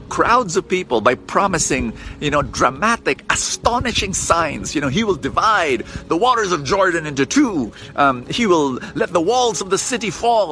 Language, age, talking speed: English, 50-69, 175 wpm